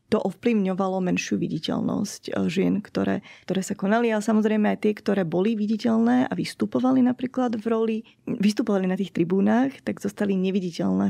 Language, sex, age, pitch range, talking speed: Slovak, female, 20-39, 195-225 Hz, 150 wpm